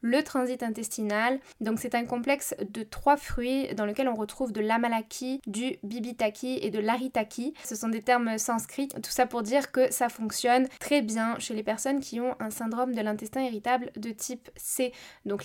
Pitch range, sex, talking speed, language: 220-265 Hz, female, 190 wpm, French